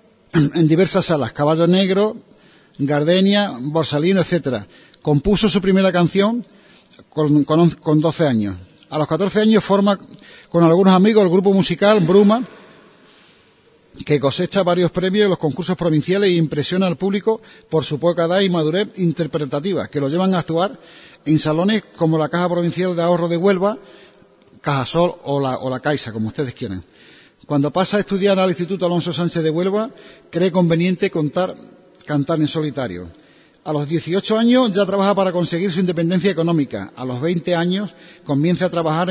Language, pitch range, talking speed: Spanish, 155-190 Hz, 160 wpm